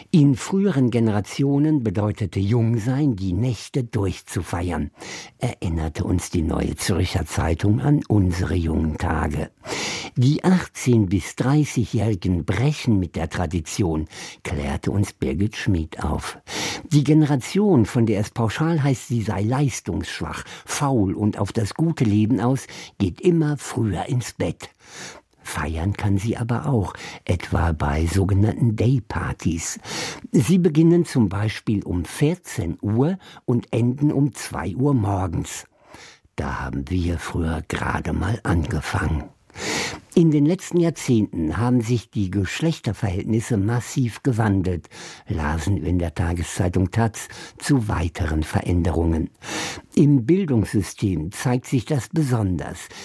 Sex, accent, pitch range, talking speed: male, German, 95-140 Hz, 120 wpm